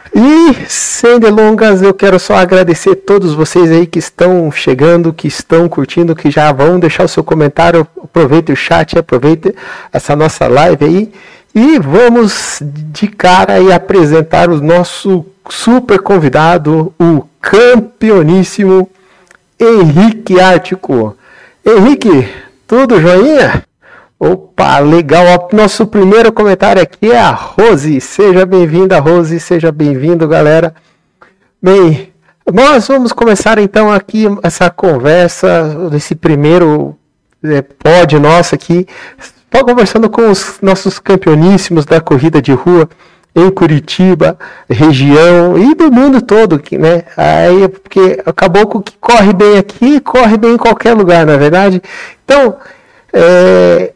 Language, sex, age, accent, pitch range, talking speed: Portuguese, male, 50-69, Brazilian, 165-205 Hz, 130 wpm